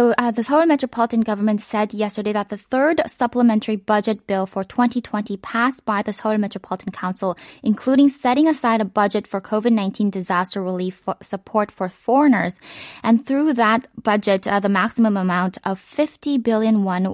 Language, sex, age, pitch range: Korean, female, 10-29, 195-235 Hz